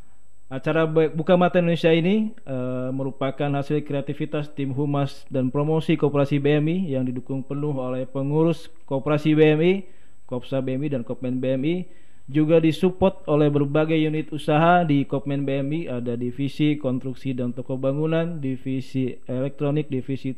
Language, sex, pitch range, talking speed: Indonesian, male, 130-155 Hz, 135 wpm